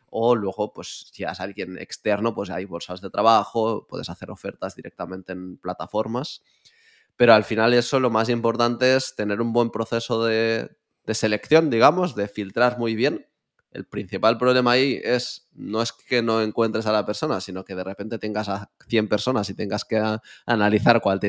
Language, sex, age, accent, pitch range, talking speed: Spanish, male, 20-39, Spanish, 100-115 Hz, 185 wpm